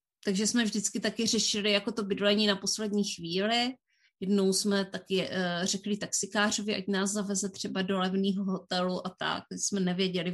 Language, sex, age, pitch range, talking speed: Czech, female, 30-49, 190-225 Hz, 155 wpm